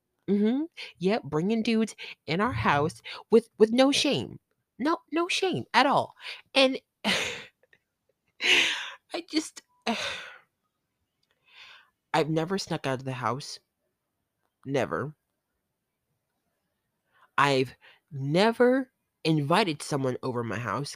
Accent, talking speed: American, 100 wpm